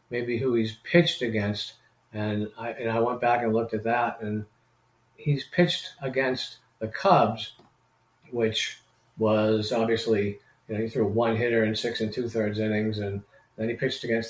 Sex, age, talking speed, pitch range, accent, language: male, 50-69, 170 wpm, 105-120 Hz, American, English